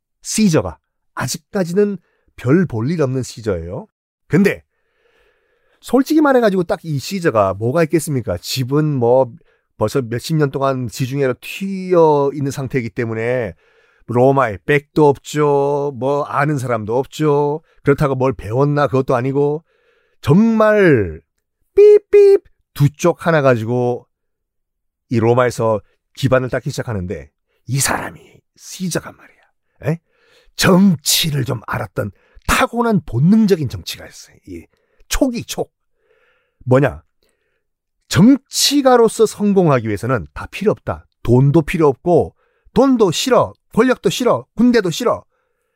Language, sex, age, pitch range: Korean, male, 40-59, 125-205 Hz